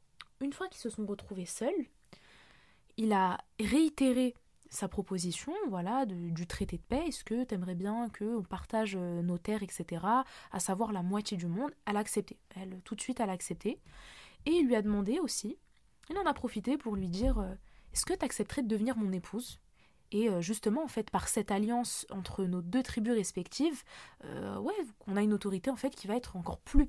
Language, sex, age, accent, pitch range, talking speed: French, female, 20-39, French, 195-265 Hz, 205 wpm